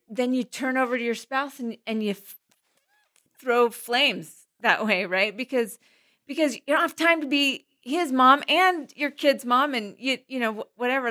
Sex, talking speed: female, 190 wpm